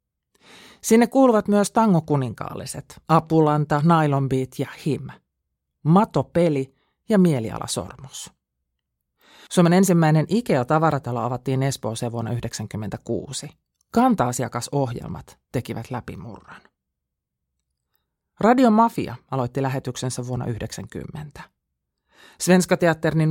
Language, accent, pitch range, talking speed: Finnish, native, 120-165 Hz, 75 wpm